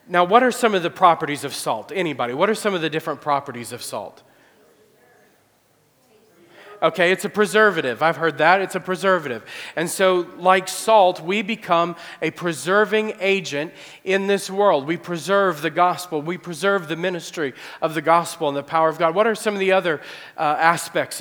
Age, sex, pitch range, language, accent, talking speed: 40-59, male, 165-200 Hz, English, American, 185 wpm